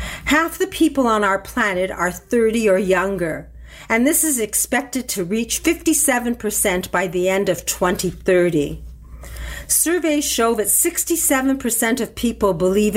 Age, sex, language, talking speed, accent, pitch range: 50-69, female, English, 135 wpm, American, 175-245 Hz